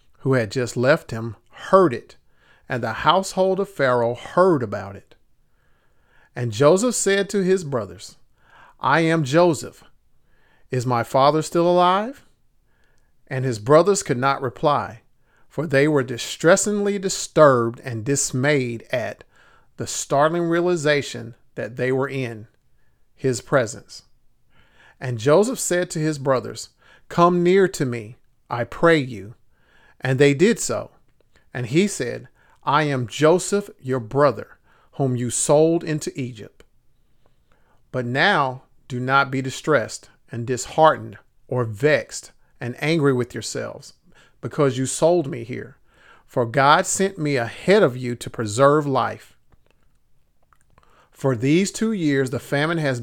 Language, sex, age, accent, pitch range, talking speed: English, male, 40-59, American, 125-160 Hz, 135 wpm